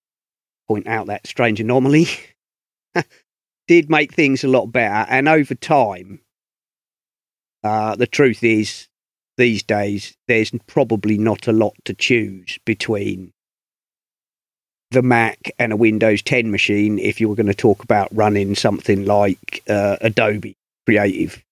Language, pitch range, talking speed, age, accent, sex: English, 110-130 Hz, 135 wpm, 40-59, British, male